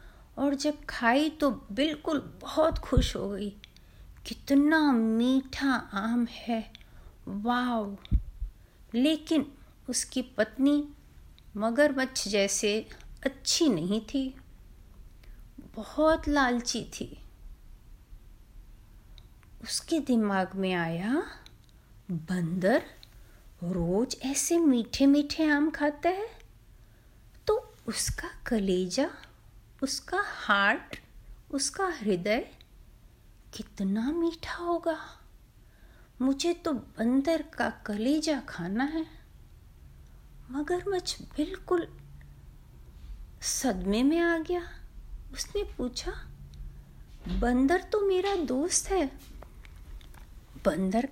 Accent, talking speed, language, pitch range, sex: native, 80 wpm, Hindi, 205-320 Hz, female